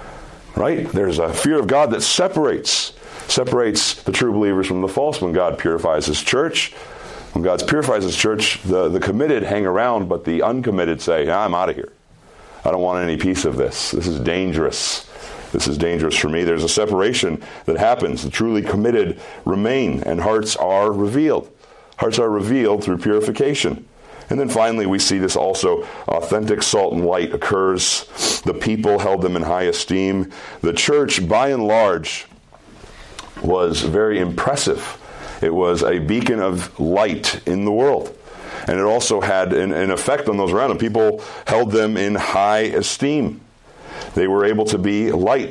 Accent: American